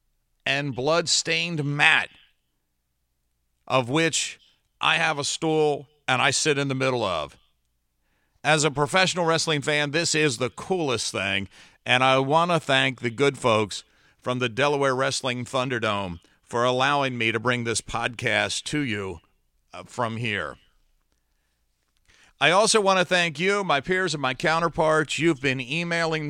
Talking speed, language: 145 wpm, English